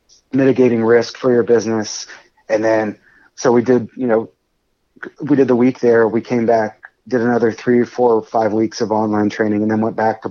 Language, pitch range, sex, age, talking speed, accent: English, 110-125 Hz, male, 30-49, 200 wpm, American